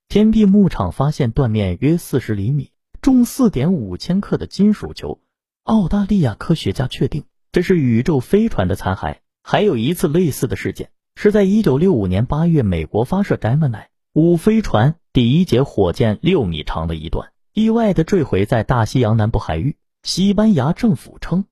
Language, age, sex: Chinese, 30-49, male